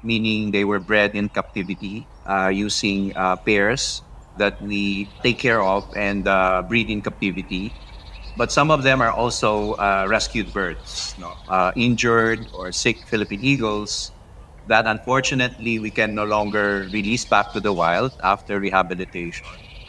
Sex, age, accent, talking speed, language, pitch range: male, 30-49, native, 145 wpm, Filipino, 95-115 Hz